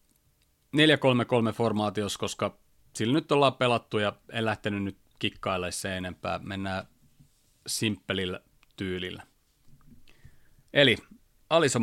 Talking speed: 100 wpm